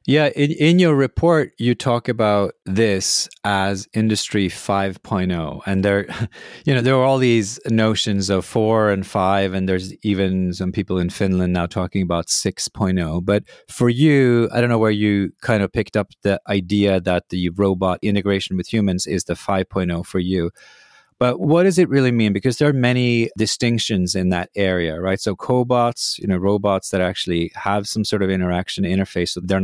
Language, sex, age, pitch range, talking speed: English, male, 30-49, 95-115 Hz, 180 wpm